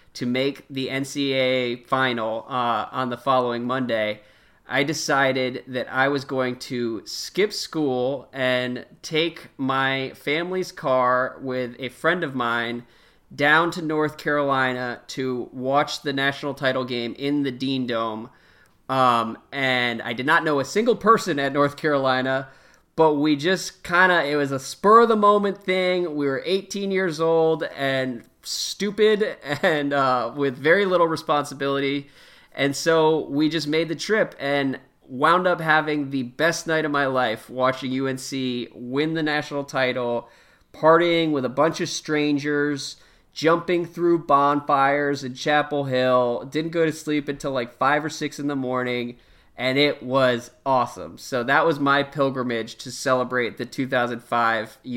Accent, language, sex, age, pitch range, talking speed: American, English, male, 30-49, 125-155 Hz, 150 wpm